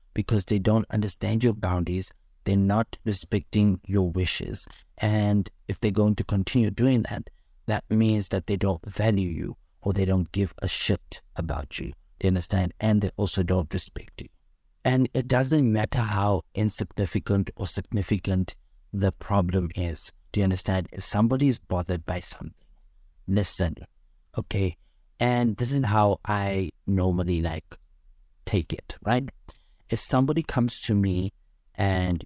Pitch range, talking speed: 90-110 Hz, 150 wpm